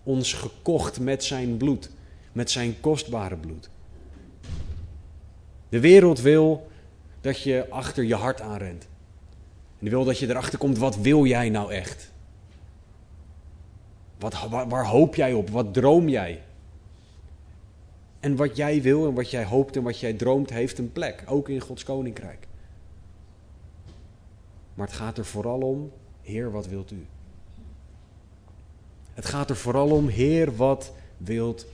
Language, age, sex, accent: Dutch, 30-49, male, Dutch